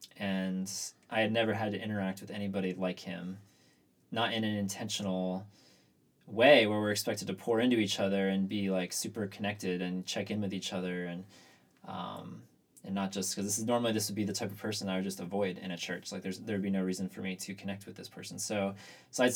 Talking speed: 230 wpm